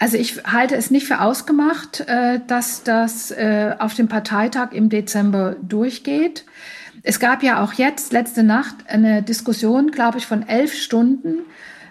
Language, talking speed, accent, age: German, 145 wpm, German, 50-69